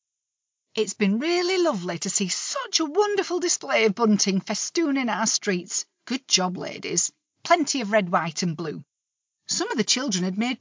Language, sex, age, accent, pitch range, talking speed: English, female, 40-59, British, 180-255 Hz, 170 wpm